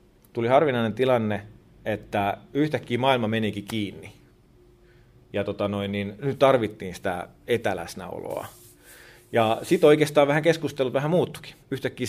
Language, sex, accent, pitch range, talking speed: Finnish, male, native, 100-125 Hz, 105 wpm